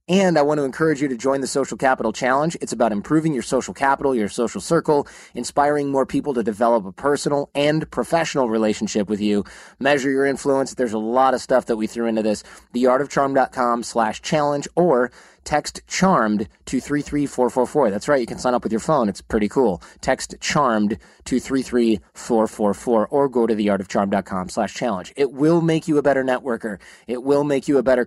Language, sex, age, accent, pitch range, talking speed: English, male, 30-49, American, 115-145 Hz, 190 wpm